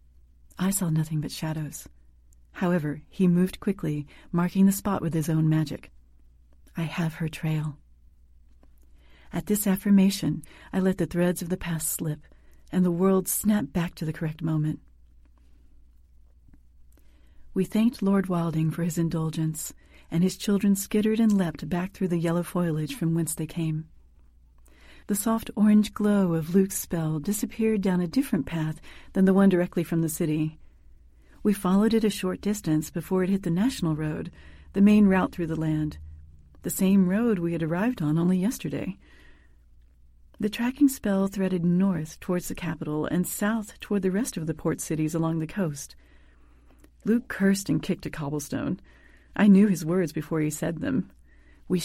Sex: female